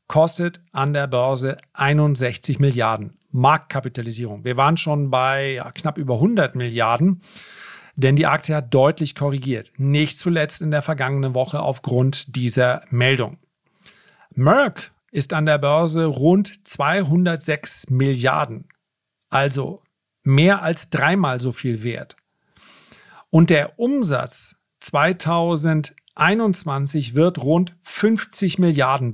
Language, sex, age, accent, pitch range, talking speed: German, male, 40-59, German, 135-175 Hz, 110 wpm